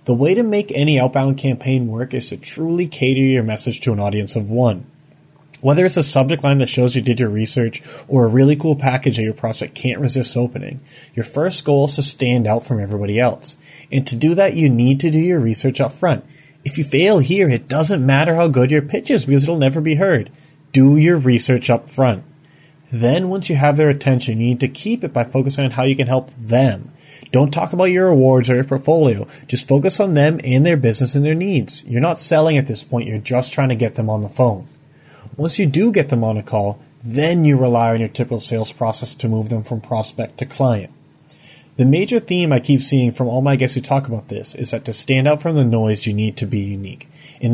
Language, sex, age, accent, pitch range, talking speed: English, male, 30-49, American, 120-155 Hz, 235 wpm